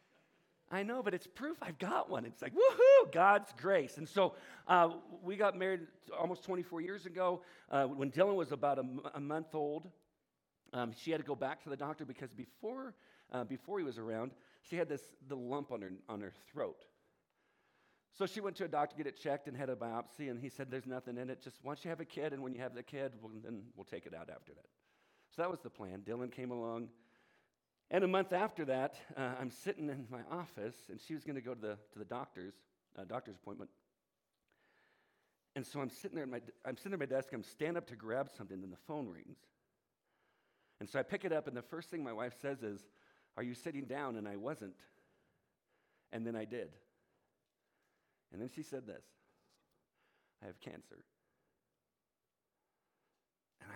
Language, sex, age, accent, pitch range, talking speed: English, male, 50-69, American, 125-175 Hz, 210 wpm